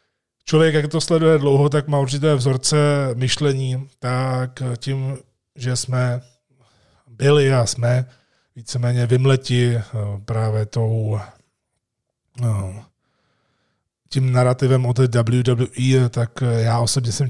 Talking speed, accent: 105 wpm, native